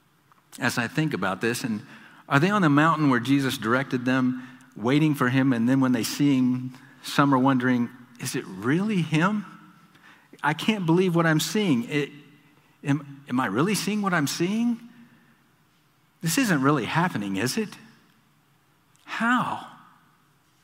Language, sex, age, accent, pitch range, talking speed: English, male, 50-69, American, 135-165 Hz, 150 wpm